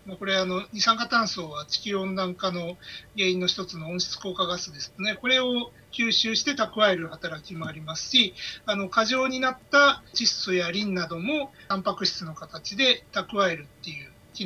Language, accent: Japanese, native